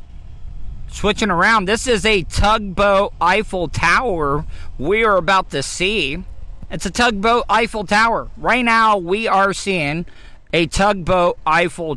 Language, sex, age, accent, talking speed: English, male, 40-59, American, 130 wpm